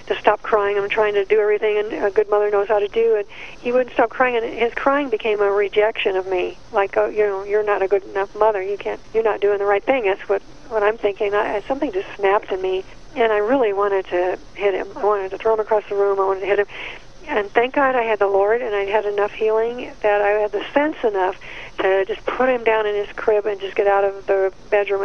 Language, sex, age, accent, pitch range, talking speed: English, female, 50-69, American, 200-230 Hz, 270 wpm